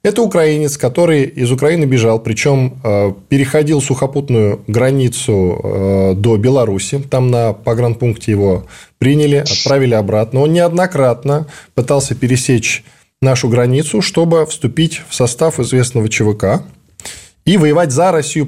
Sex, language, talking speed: male, Russian, 115 wpm